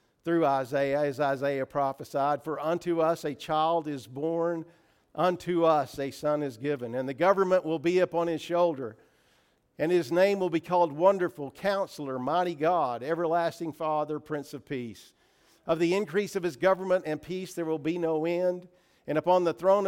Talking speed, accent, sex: 175 wpm, American, male